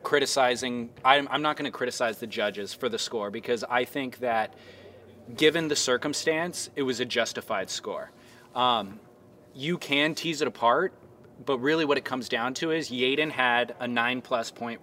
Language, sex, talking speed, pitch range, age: English, male, 180 wpm, 120-140 Hz, 20-39